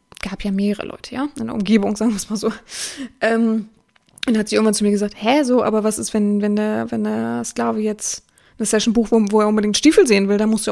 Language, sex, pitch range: German, female, 210-260 Hz